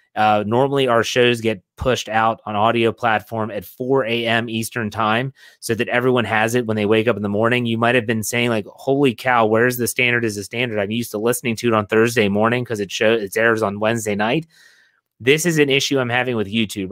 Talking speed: 230 wpm